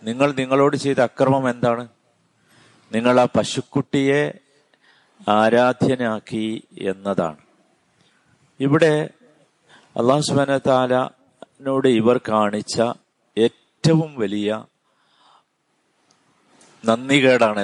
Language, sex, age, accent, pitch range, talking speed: Malayalam, male, 50-69, native, 110-135 Hz, 60 wpm